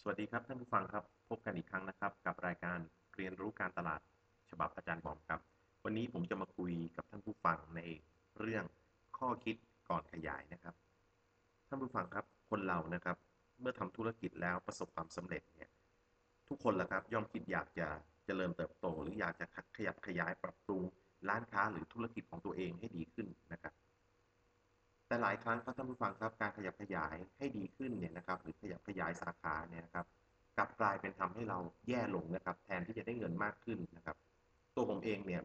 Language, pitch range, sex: Thai, 85-110 Hz, male